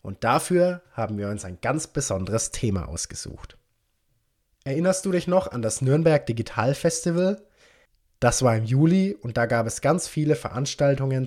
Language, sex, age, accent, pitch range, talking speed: German, male, 20-39, German, 115-150 Hz, 160 wpm